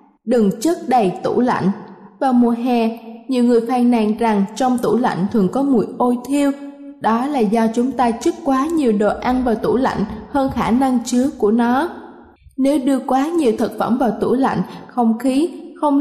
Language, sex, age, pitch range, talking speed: Vietnamese, female, 20-39, 220-270 Hz, 195 wpm